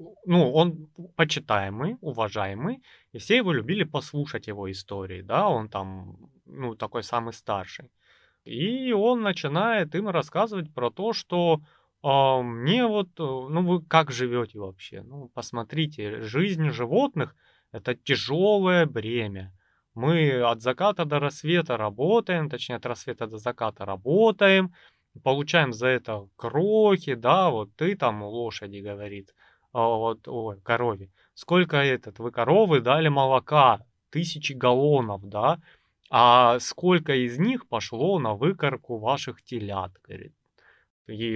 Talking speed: 125 wpm